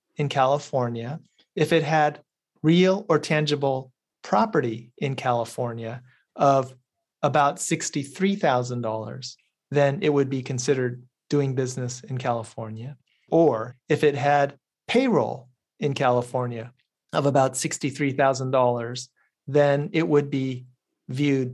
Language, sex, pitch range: English, male, 125-150 Hz